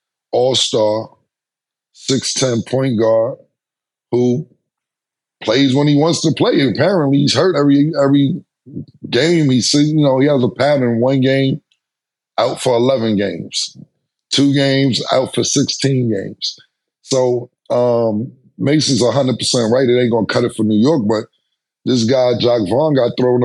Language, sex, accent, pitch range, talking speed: English, male, American, 110-135 Hz, 150 wpm